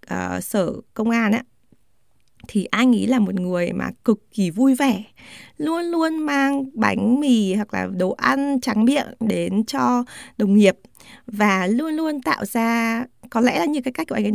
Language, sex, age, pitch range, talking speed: Vietnamese, female, 20-39, 195-255 Hz, 190 wpm